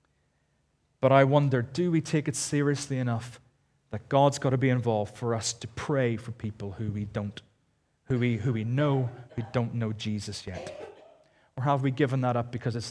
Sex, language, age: male, English, 30-49